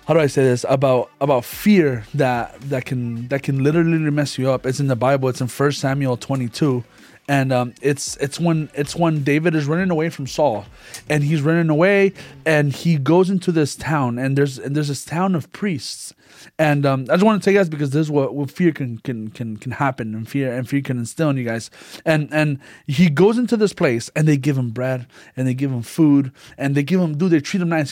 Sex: male